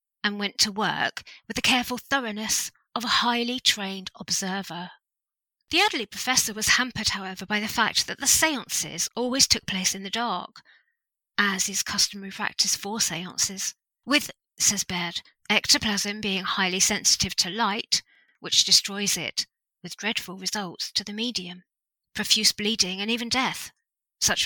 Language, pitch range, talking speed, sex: English, 190-245 Hz, 150 wpm, female